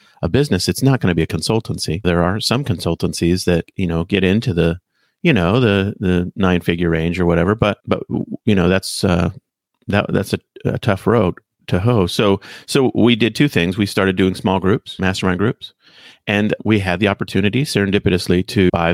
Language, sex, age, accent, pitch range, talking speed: English, male, 30-49, American, 85-105 Hz, 200 wpm